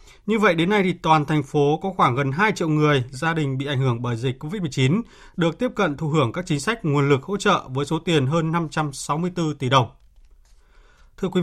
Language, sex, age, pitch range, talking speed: Vietnamese, male, 20-39, 140-175 Hz, 225 wpm